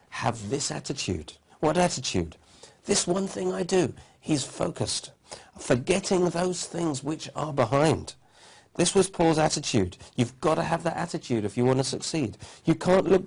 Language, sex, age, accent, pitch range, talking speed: English, male, 50-69, British, 115-165 Hz, 165 wpm